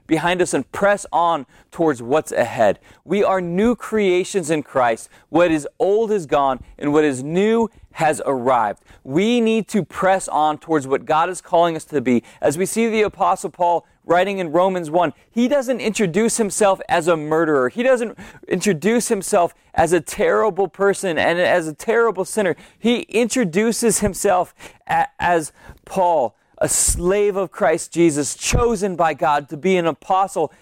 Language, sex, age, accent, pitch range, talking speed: English, male, 30-49, American, 165-215 Hz, 165 wpm